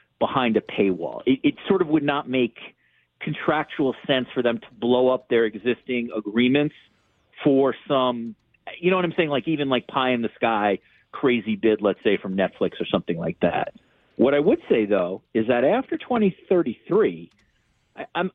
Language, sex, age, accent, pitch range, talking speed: English, male, 50-69, American, 115-155 Hz, 180 wpm